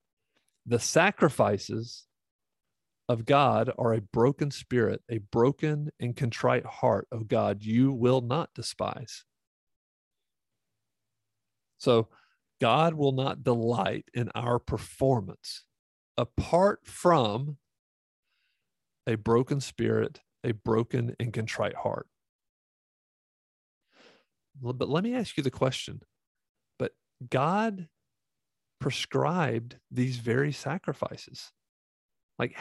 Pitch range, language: 115-150 Hz, English